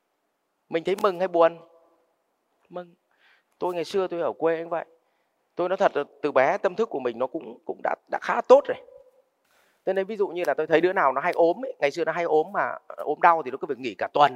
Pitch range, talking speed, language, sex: 155-225 Hz, 260 wpm, Vietnamese, male